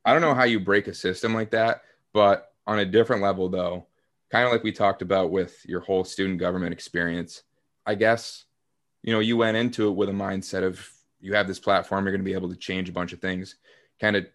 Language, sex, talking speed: English, male, 235 wpm